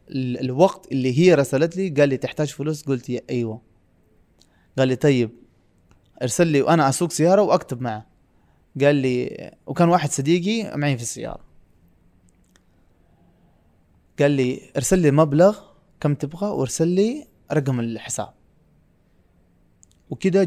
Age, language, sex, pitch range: 20-39, Arabic, male, 110-155 Hz